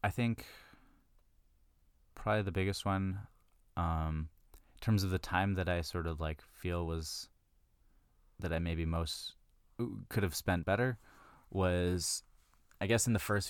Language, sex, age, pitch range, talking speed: English, male, 20-39, 80-100 Hz, 145 wpm